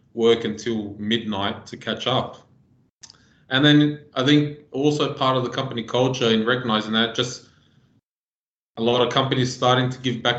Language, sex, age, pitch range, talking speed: English, male, 20-39, 110-125 Hz, 160 wpm